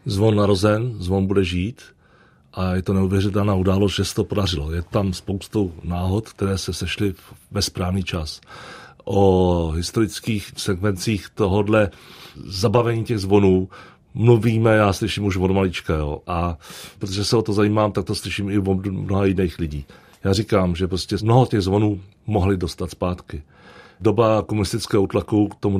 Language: Czech